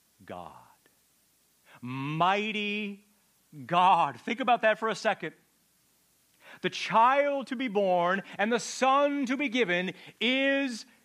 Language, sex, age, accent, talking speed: English, male, 40-59, American, 115 wpm